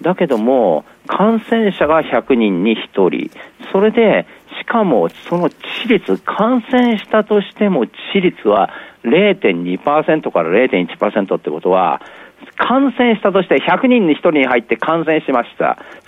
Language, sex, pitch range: Japanese, male, 160-255 Hz